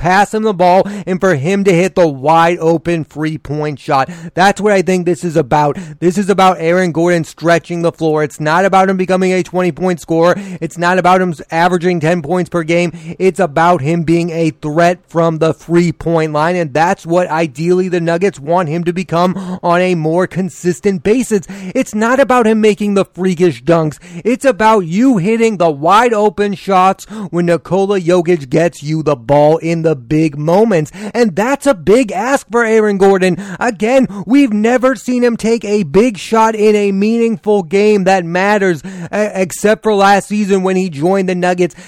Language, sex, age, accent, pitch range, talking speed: English, male, 30-49, American, 170-210 Hz, 190 wpm